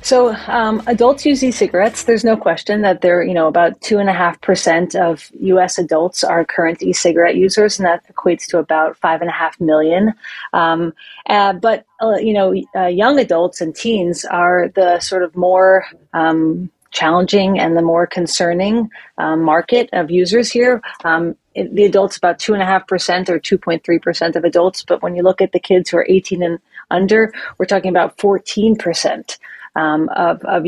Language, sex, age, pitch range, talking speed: English, female, 30-49, 170-200 Hz, 185 wpm